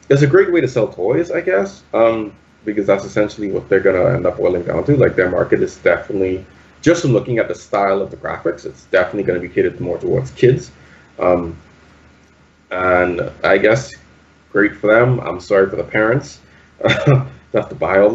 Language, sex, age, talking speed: English, male, 20-39, 200 wpm